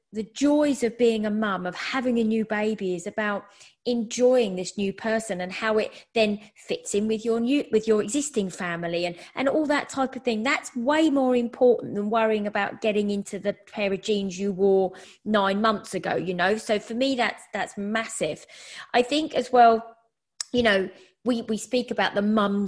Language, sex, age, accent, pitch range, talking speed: English, female, 30-49, British, 195-235 Hz, 200 wpm